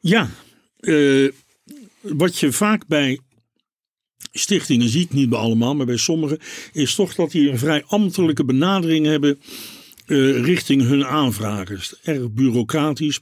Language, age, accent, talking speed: Dutch, 60-79, Dutch, 130 wpm